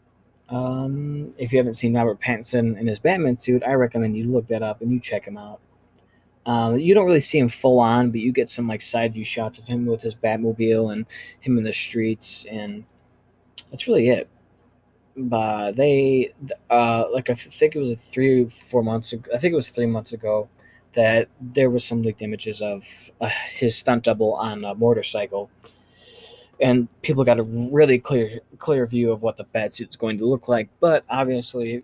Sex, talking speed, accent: male, 200 wpm, American